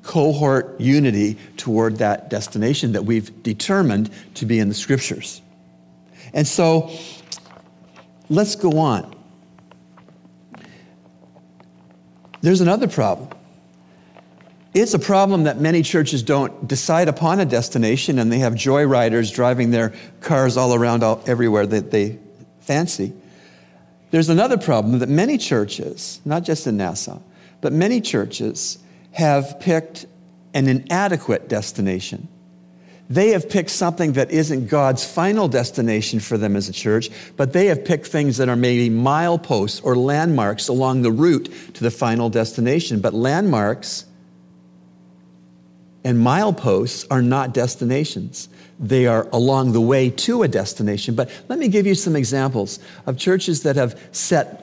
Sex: male